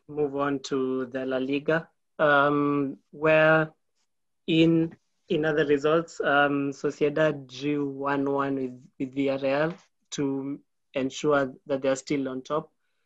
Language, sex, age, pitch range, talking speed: English, male, 20-39, 140-150 Hz, 130 wpm